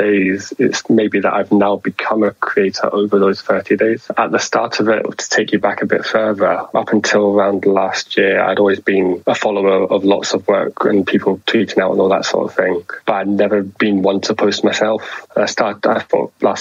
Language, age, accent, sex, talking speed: English, 20-39, British, male, 225 wpm